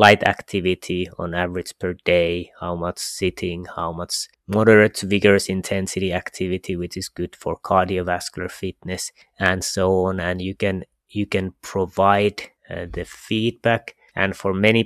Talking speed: 150 wpm